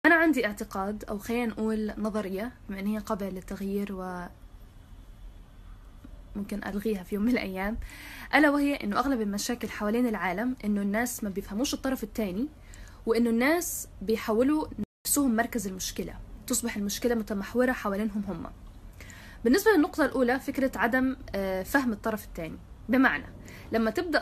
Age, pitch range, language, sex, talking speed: 10-29, 210-275 Hz, Arabic, female, 135 wpm